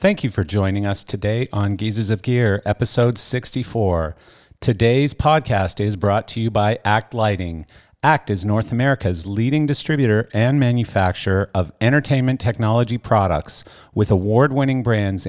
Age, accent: 50-69, American